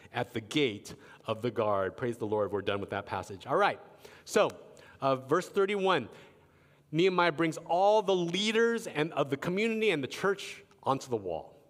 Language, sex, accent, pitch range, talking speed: English, male, American, 125-185 Hz, 180 wpm